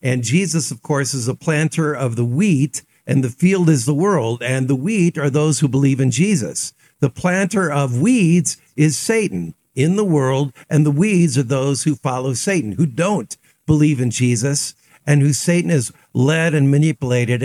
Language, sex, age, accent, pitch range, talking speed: English, male, 50-69, American, 140-180 Hz, 185 wpm